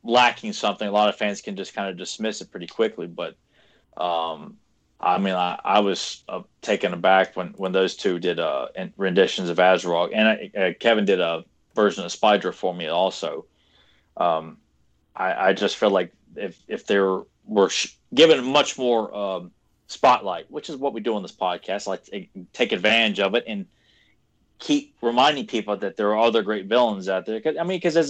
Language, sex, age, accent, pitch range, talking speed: English, male, 30-49, American, 90-125 Hz, 190 wpm